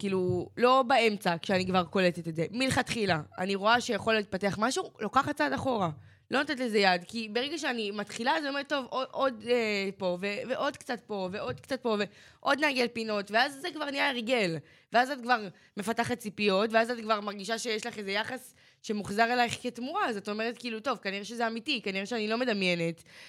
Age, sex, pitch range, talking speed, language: 20-39, female, 200-265 Hz, 195 wpm, Hebrew